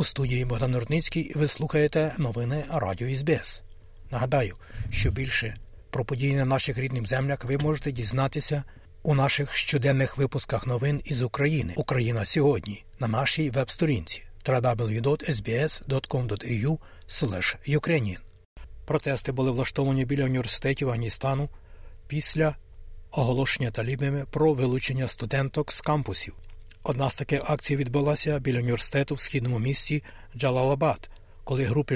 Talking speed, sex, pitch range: 115 wpm, male, 115-145 Hz